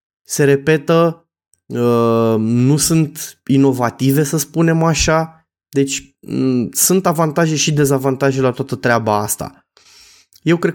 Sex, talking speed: male, 105 wpm